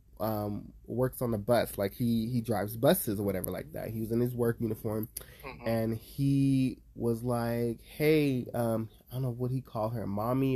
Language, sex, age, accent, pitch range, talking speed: English, male, 20-39, American, 115-145 Hz, 195 wpm